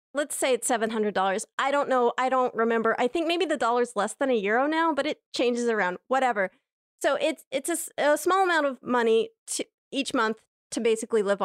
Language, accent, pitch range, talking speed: English, American, 225-285 Hz, 220 wpm